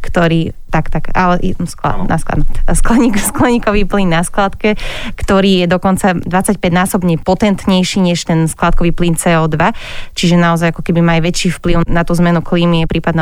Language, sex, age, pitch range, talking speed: Slovak, female, 20-39, 175-200 Hz, 140 wpm